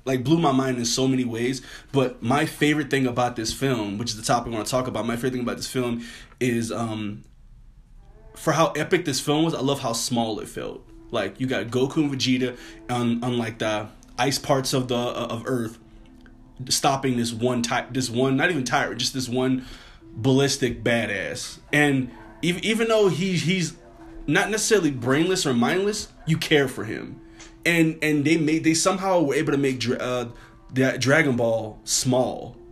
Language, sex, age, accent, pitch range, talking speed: English, male, 20-39, American, 120-150 Hz, 195 wpm